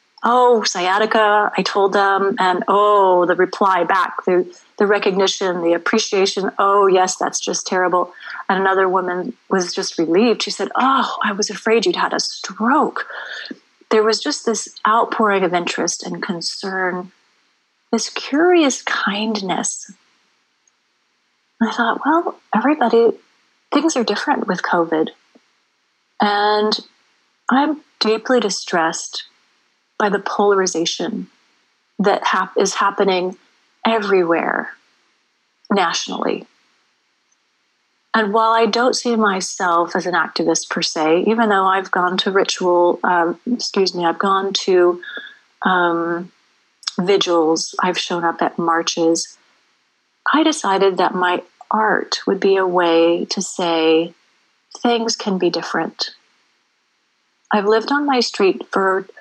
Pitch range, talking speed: 180-225 Hz, 120 wpm